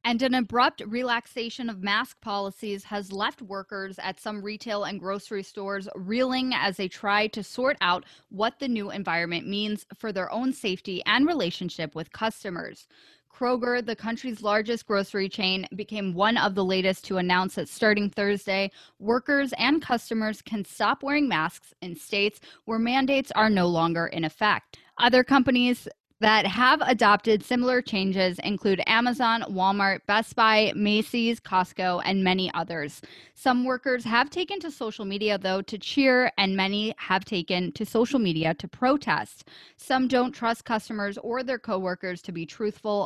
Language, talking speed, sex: English, 160 wpm, female